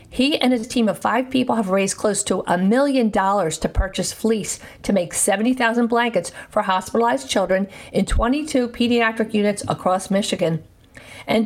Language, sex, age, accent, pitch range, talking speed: English, female, 50-69, American, 195-245 Hz, 160 wpm